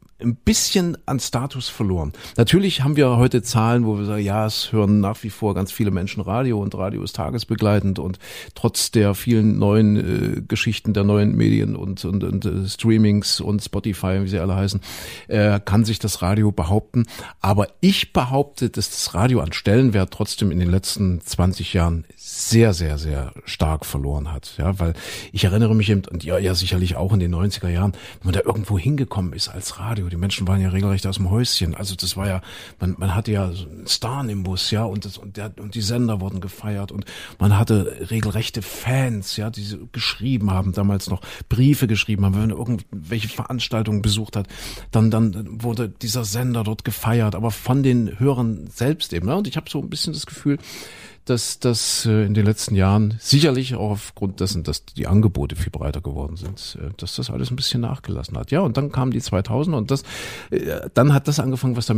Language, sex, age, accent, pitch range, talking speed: German, male, 50-69, German, 95-120 Hz, 200 wpm